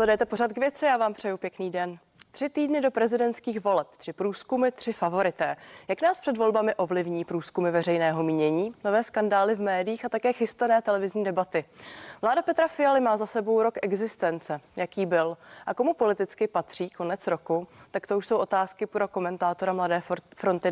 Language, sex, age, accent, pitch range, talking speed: Czech, female, 30-49, native, 180-230 Hz, 175 wpm